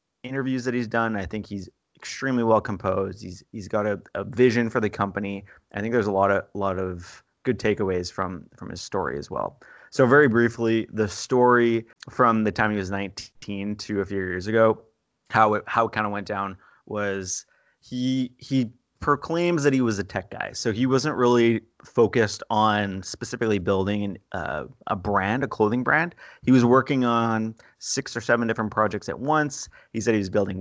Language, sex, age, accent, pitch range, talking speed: English, male, 20-39, American, 100-115 Hz, 195 wpm